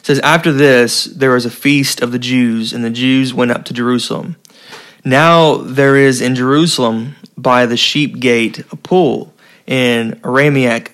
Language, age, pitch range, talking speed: English, 20-39, 120-145 Hz, 170 wpm